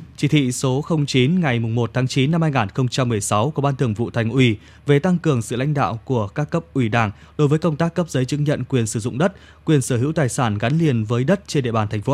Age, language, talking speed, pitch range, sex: 20-39, Vietnamese, 265 wpm, 120-155 Hz, male